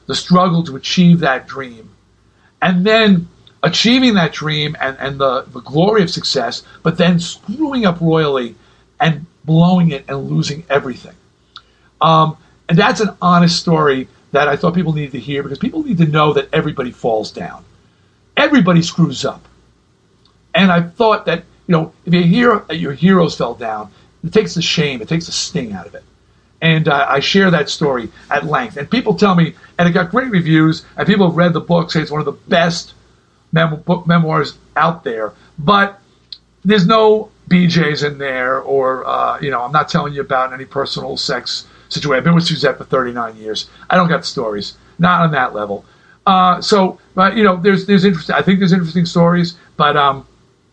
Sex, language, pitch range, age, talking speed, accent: male, English, 140-185 Hz, 50-69, 190 wpm, American